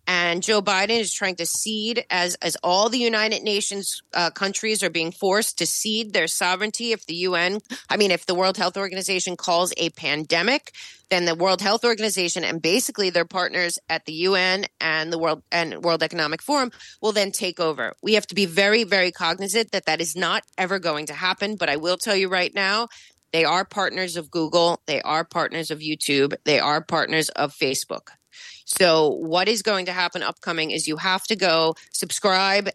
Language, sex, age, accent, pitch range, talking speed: English, female, 30-49, American, 165-195 Hz, 200 wpm